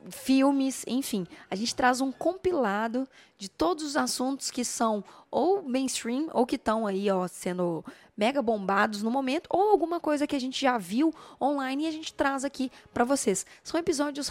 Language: Portuguese